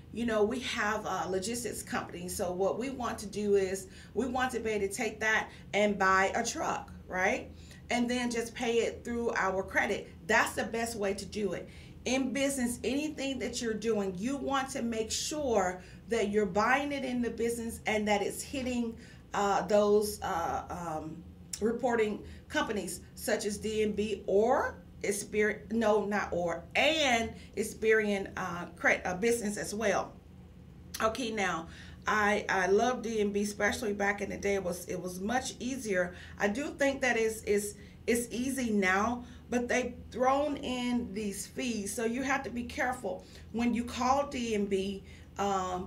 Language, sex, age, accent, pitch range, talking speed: English, female, 40-59, American, 195-235 Hz, 170 wpm